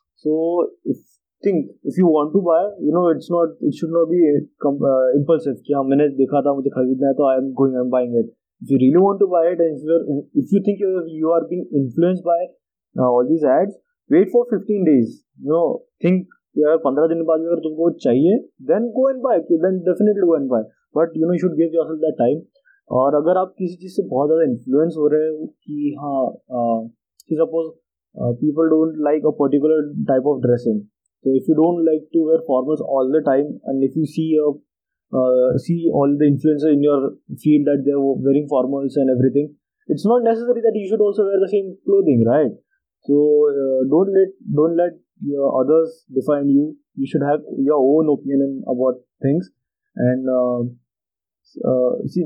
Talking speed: 180 wpm